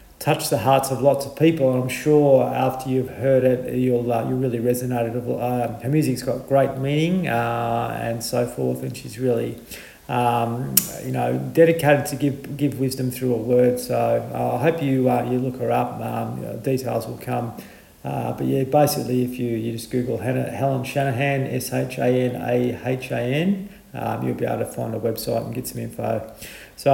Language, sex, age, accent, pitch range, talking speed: English, male, 40-59, Australian, 115-140 Hz, 205 wpm